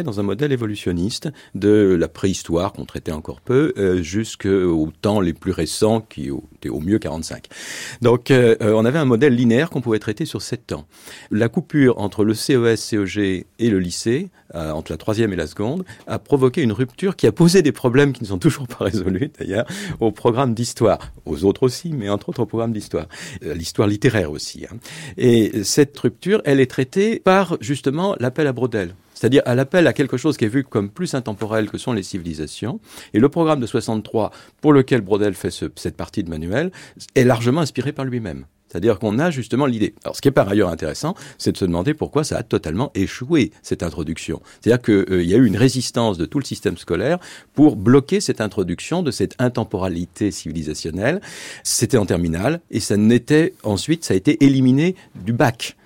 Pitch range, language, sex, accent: 95-135 Hz, French, male, French